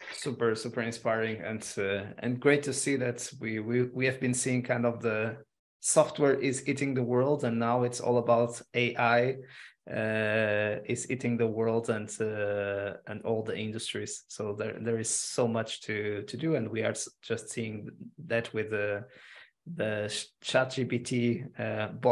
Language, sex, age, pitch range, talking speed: English, male, 20-39, 110-125 Hz, 170 wpm